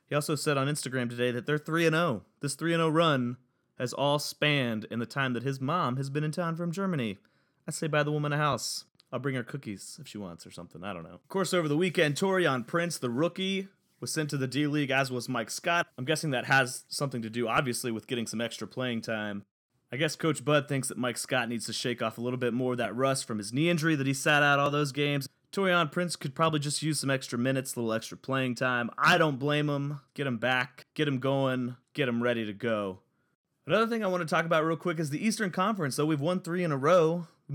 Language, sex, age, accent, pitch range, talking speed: English, male, 30-49, American, 125-165 Hz, 255 wpm